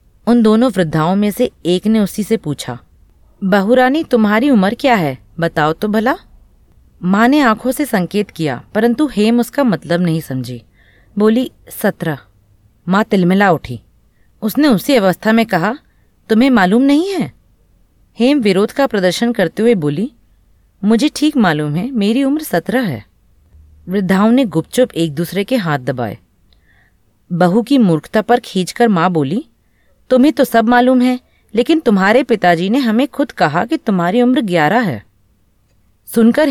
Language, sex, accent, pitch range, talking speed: Hindi, female, native, 150-250 Hz, 150 wpm